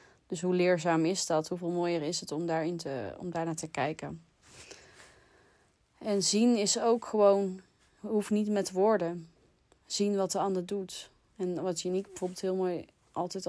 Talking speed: 165 wpm